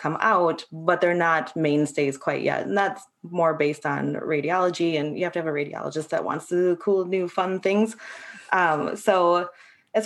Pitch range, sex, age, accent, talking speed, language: 155-200 Hz, female, 20-39, American, 195 wpm, English